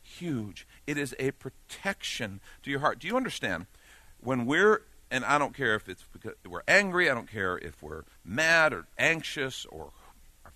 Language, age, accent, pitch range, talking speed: English, 50-69, American, 90-140 Hz, 180 wpm